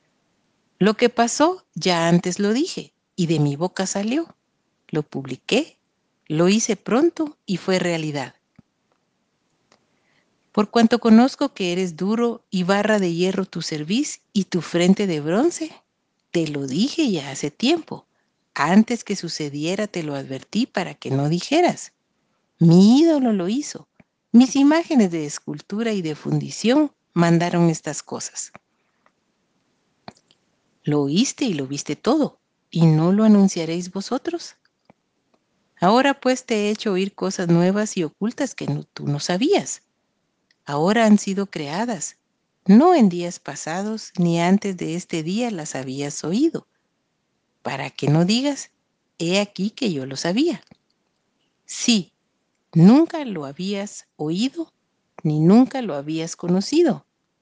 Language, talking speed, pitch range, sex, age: Spanish, 135 wpm, 170-235 Hz, female, 50-69